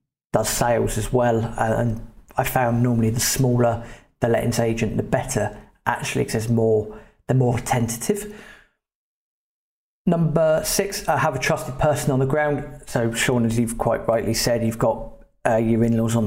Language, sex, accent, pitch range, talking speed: English, male, British, 115-135 Hz, 165 wpm